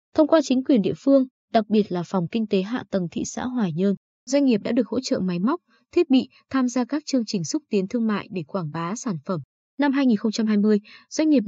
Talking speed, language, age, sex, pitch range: 240 wpm, Vietnamese, 20-39, female, 190-250 Hz